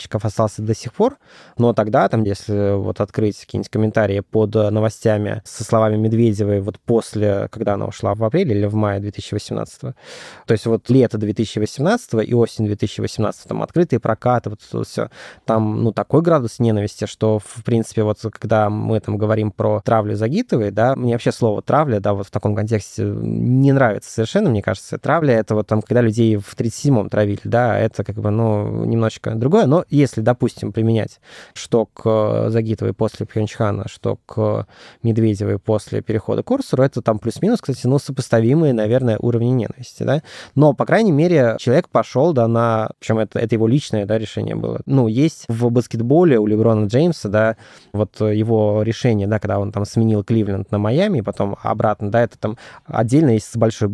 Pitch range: 105-120 Hz